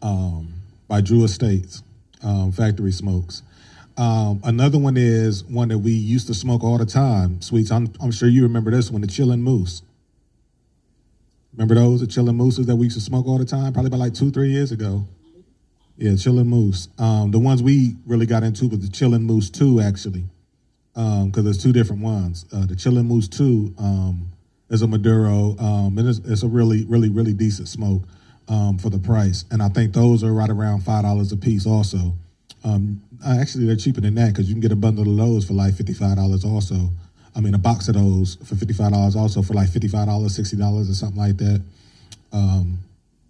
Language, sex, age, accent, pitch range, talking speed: English, male, 30-49, American, 100-120 Hz, 200 wpm